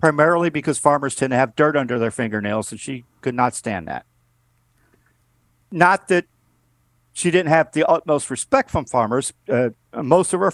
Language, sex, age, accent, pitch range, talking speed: English, male, 50-69, American, 120-155 Hz, 170 wpm